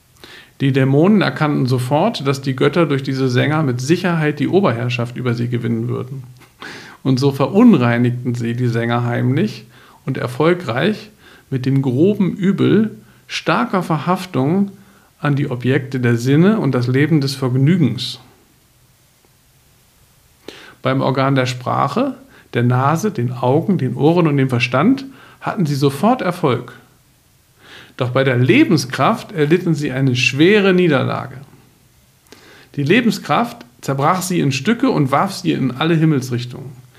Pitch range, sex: 125-165 Hz, male